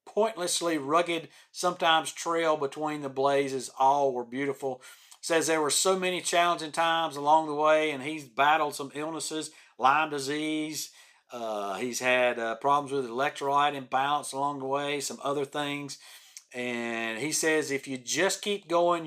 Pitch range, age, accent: 130-155 Hz, 40-59, American